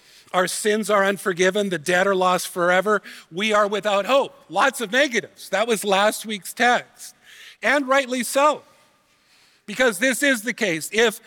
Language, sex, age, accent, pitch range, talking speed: English, male, 50-69, American, 190-230 Hz, 160 wpm